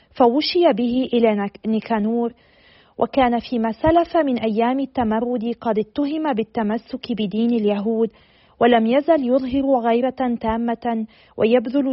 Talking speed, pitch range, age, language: 105 wpm, 220-255 Hz, 40-59, Arabic